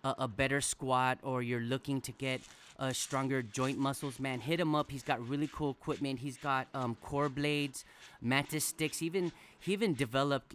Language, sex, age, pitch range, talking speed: English, male, 30-49, 120-145 Hz, 180 wpm